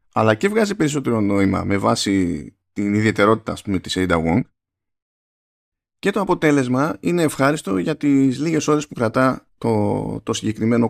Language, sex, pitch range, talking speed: Greek, male, 100-135 Hz, 150 wpm